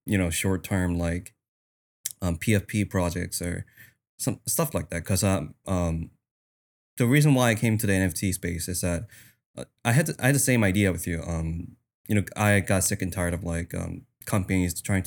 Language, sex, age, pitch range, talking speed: English, male, 20-39, 90-110 Hz, 195 wpm